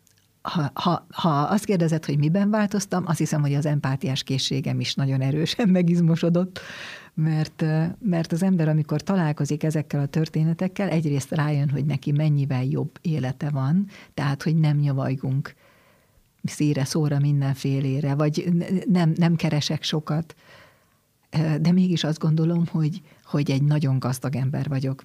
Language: Hungarian